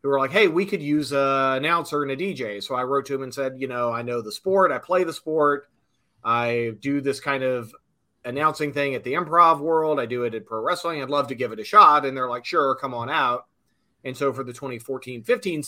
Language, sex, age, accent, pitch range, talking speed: English, male, 30-49, American, 120-150 Hz, 250 wpm